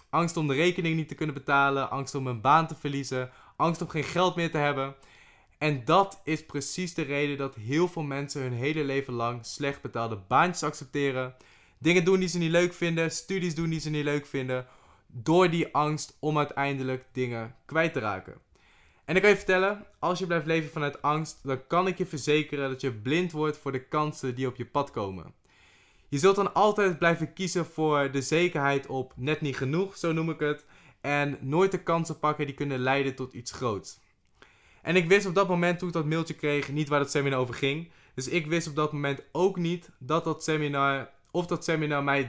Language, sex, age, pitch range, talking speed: Dutch, male, 20-39, 135-165 Hz, 215 wpm